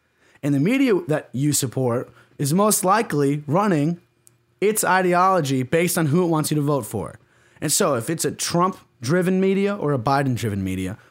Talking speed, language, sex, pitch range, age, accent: 175 wpm, English, male, 125-180 Hz, 30-49, American